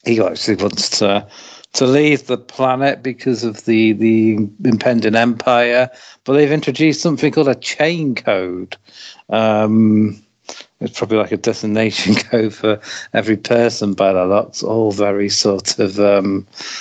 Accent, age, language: British, 50-69, English